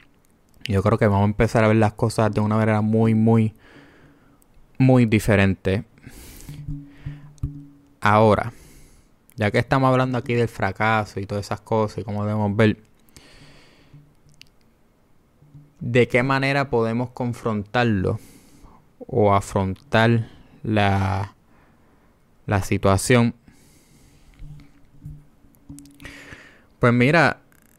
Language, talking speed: Spanish, 95 wpm